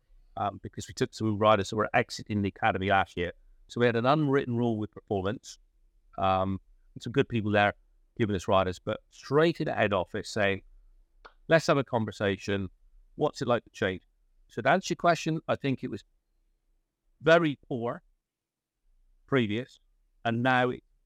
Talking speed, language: 170 wpm, English